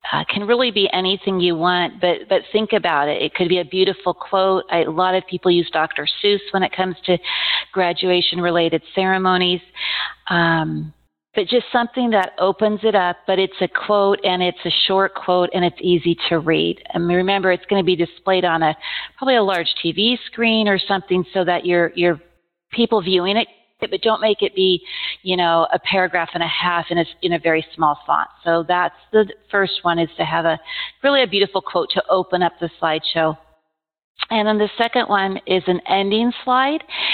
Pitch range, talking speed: 175-210 Hz, 205 wpm